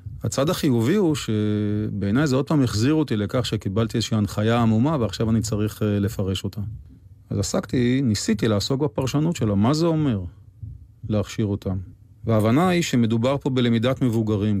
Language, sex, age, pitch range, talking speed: Hebrew, male, 40-59, 105-125 Hz, 150 wpm